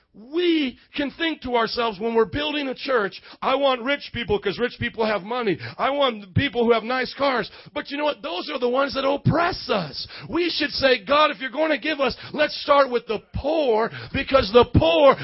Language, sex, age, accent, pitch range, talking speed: English, male, 40-59, American, 200-275 Hz, 215 wpm